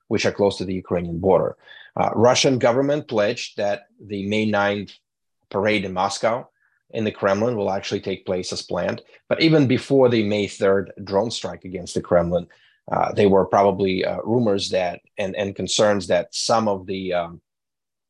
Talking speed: 175 wpm